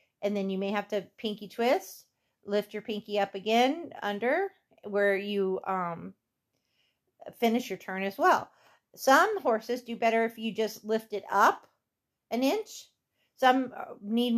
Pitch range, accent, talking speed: 200-245 Hz, American, 150 wpm